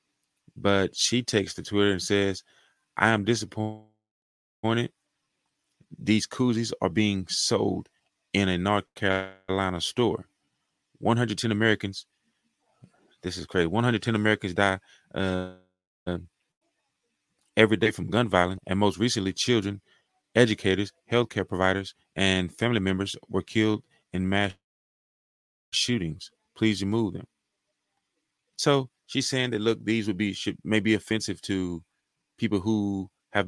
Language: English